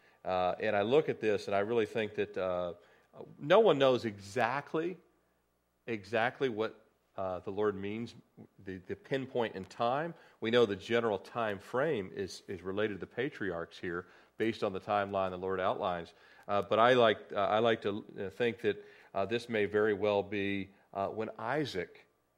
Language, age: English, 40-59